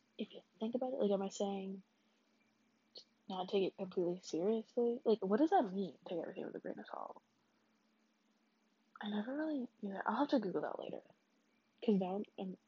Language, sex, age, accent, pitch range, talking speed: English, female, 10-29, American, 190-235 Hz, 190 wpm